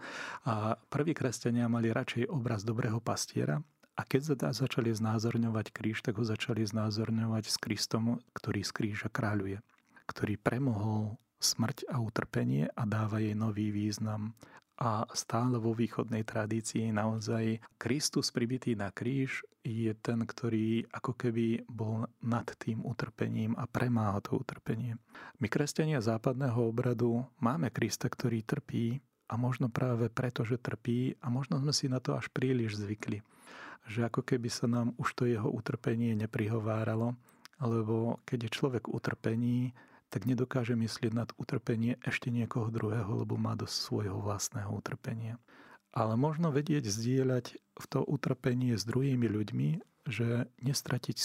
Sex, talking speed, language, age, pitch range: male, 140 wpm, Slovak, 40-59, 110-125 Hz